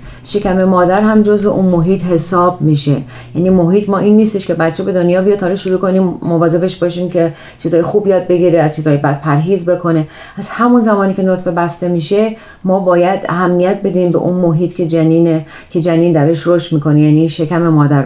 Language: Persian